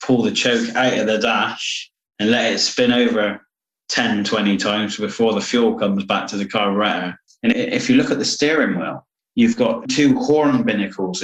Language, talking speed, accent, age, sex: English, 200 wpm, British, 30-49, male